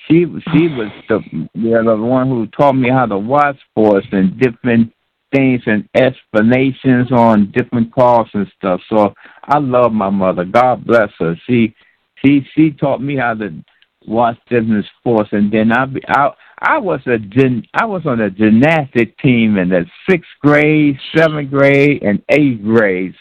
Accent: American